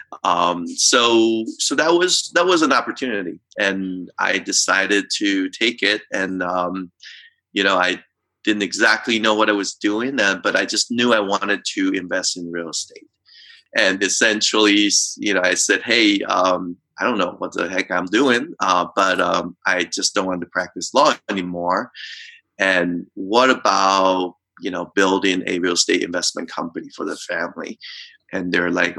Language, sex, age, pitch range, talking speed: English, male, 30-49, 95-120 Hz, 170 wpm